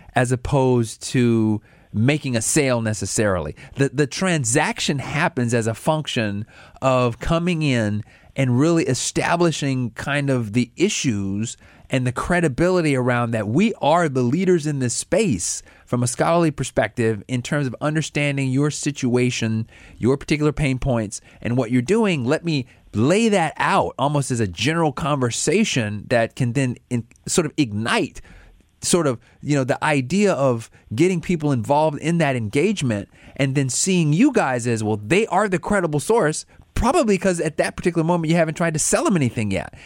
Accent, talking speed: American, 165 wpm